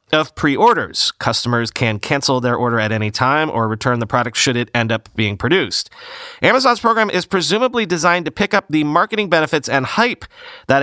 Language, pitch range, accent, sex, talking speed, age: English, 130-175 Hz, American, male, 190 wpm, 40-59